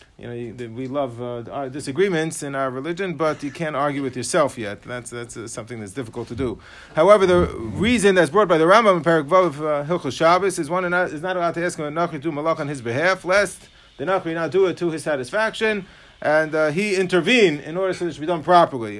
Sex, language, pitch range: male, English, 155-200 Hz